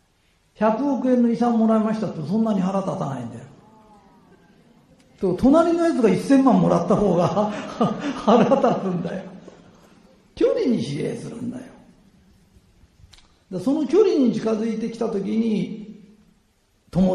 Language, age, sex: Japanese, 50-69, male